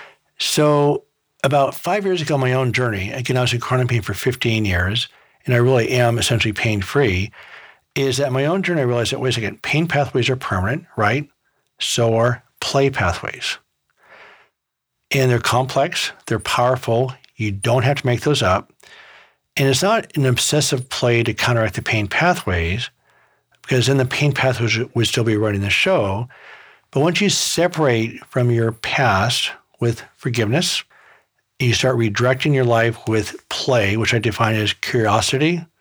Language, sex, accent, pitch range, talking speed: English, male, American, 115-140 Hz, 160 wpm